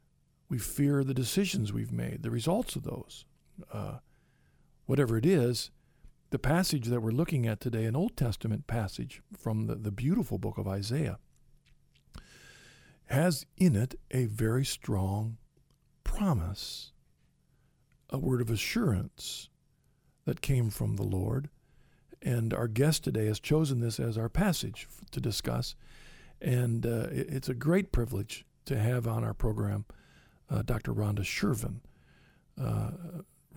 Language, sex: English, male